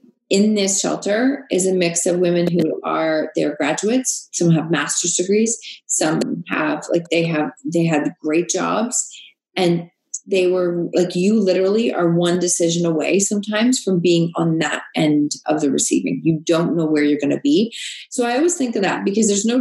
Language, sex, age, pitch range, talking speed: English, female, 30-49, 170-230 Hz, 185 wpm